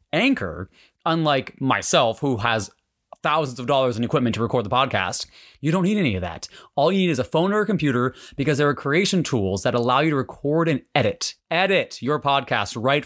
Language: English